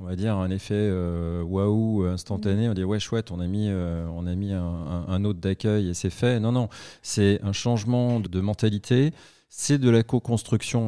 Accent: French